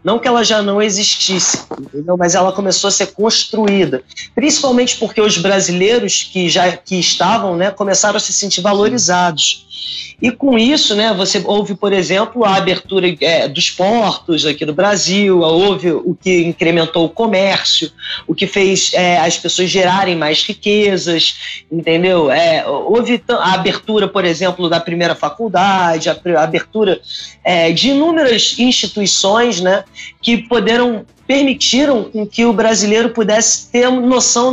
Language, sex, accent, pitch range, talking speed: Portuguese, male, Brazilian, 180-225 Hz, 145 wpm